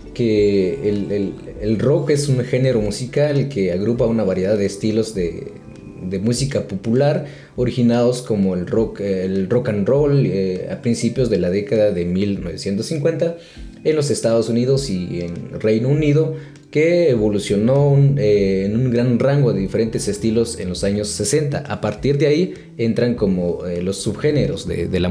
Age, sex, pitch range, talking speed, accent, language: 30-49, male, 95-135 Hz, 160 wpm, Mexican, Spanish